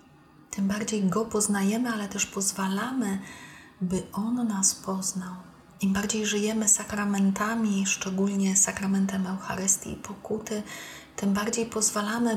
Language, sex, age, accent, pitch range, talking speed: Polish, female, 30-49, native, 190-215 Hz, 110 wpm